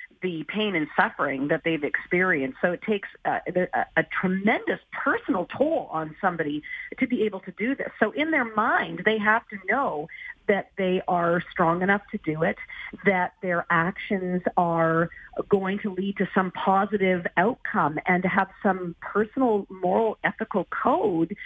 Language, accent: English, American